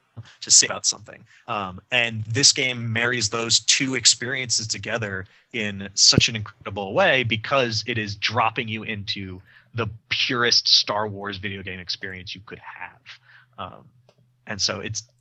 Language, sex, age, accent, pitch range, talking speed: English, male, 30-49, American, 105-125 Hz, 150 wpm